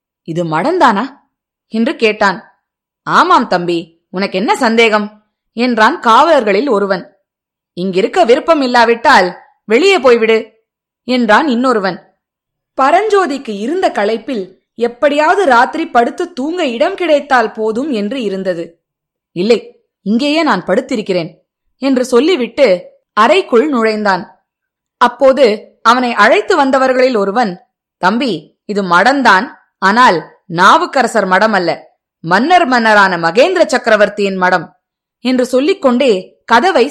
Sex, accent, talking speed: female, native, 95 wpm